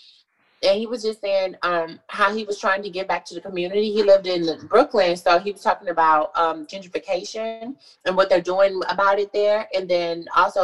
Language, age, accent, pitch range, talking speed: English, 20-39, American, 165-225 Hz, 210 wpm